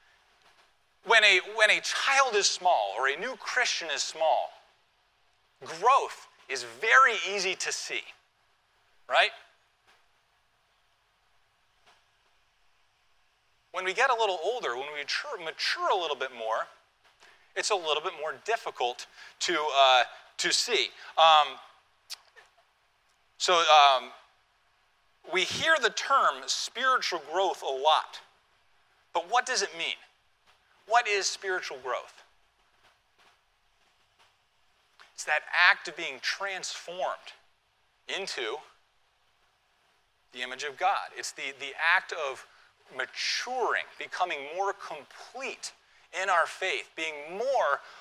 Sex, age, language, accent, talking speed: male, 40-59, English, American, 110 wpm